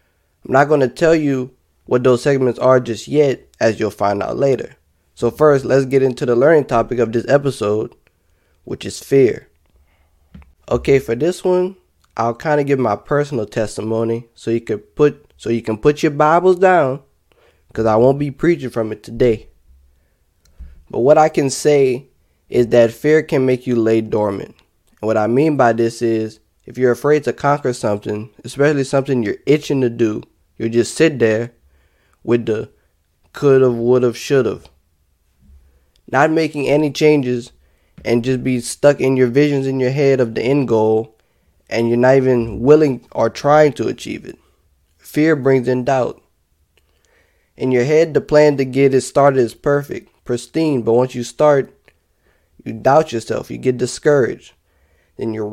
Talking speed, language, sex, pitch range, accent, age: 165 wpm, English, male, 110-140 Hz, American, 20-39